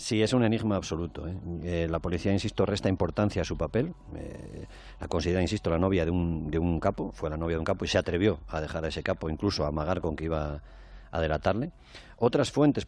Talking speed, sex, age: 235 wpm, male, 40-59